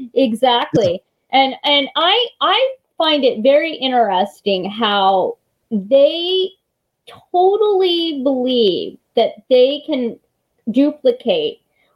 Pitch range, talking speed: 230-315 Hz, 85 wpm